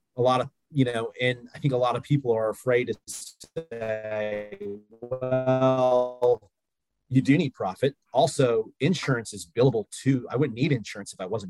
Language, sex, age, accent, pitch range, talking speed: English, male, 30-49, American, 115-145 Hz, 170 wpm